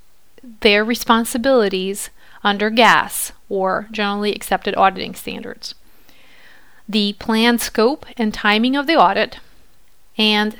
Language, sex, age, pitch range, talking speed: English, female, 40-59, 205-245 Hz, 100 wpm